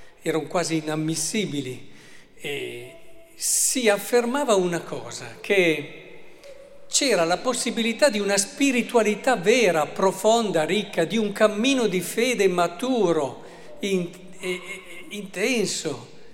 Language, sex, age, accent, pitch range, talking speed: Italian, male, 50-69, native, 155-210 Hz, 105 wpm